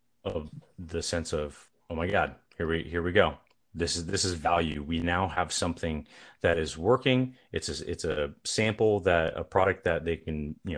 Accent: American